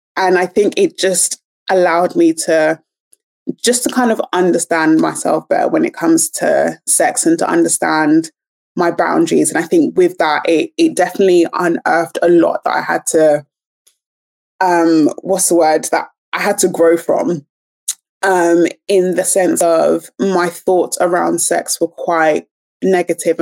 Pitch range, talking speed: 165-195 Hz, 160 wpm